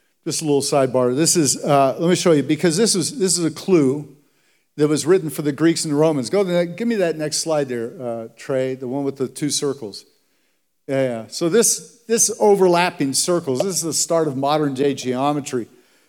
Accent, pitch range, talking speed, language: American, 145-175 Hz, 215 wpm, English